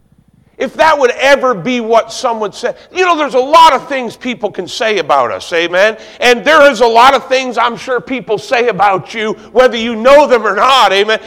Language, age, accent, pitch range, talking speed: English, 50-69, American, 230-290 Hz, 220 wpm